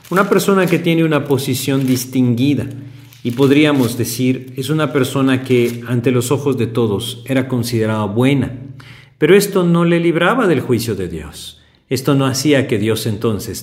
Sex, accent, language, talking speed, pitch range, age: male, Mexican, Spanish, 165 wpm, 105-140 Hz, 50-69